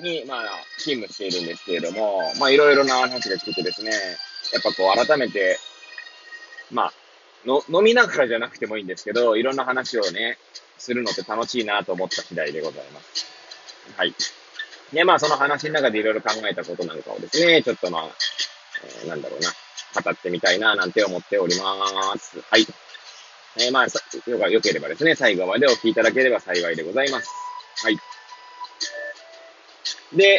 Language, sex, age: Japanese, male, 20-39